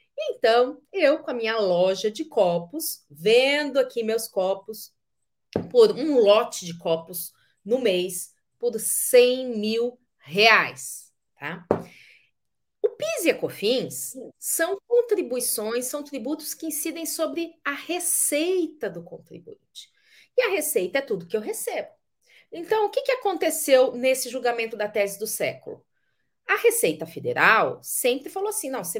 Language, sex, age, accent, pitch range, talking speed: Portuguese, female, 40-59, Brazilian, 220-330 Hz, 135 wpm